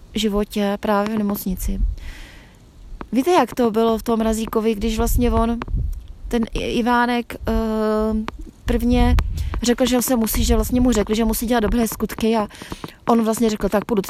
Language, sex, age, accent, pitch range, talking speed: Czech, female, 20-39, native, 205-245 Hz, 160 wpm